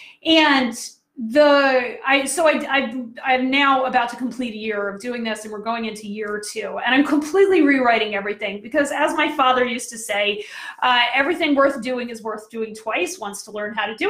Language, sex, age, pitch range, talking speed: English, female, 30-49, 220-295 Hz, 205 wpm